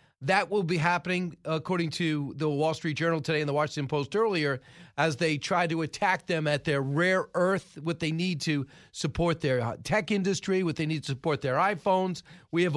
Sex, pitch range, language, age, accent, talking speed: male, 150-180 Hz, English, 40-59, American, 200 wpm